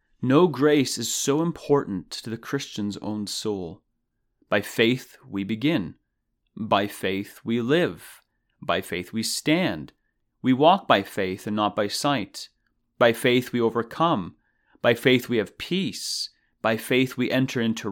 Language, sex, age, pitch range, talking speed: English, male, 30-49, 110-145 Hz, 145 wpm